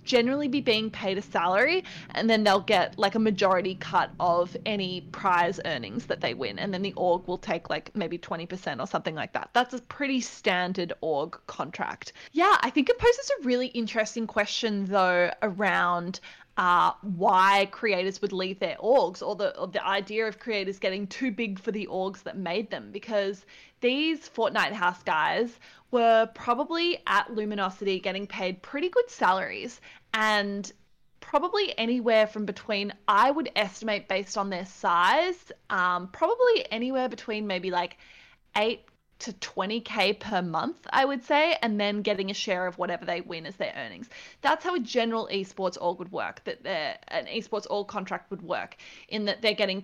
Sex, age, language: female, 20-39, English